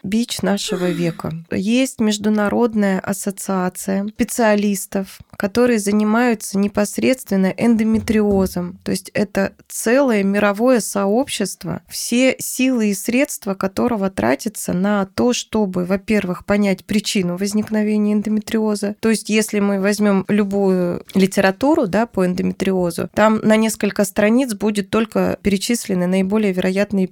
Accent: native